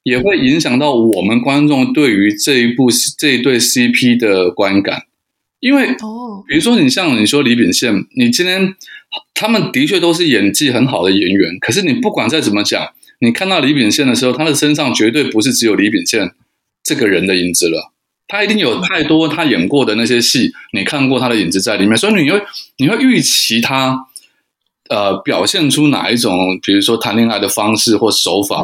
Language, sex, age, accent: Chinese, male, 20-39, native